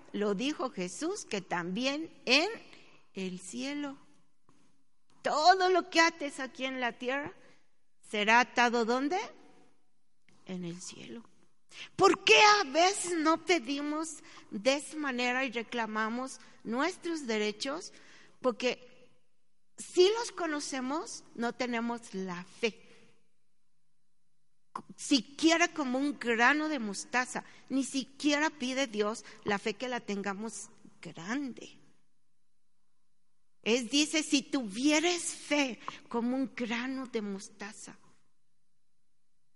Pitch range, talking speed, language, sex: 215-295 Hz, 105 wpm, Spanish, female